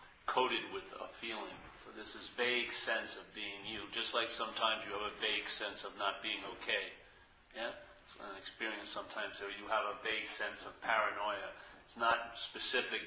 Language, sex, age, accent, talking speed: English, male, 50-69, American, 190 wpm